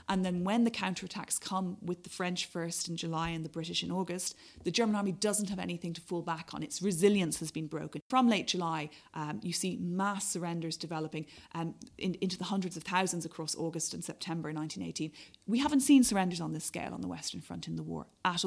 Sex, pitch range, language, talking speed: female, 165-200 Hz, English, 220 wpm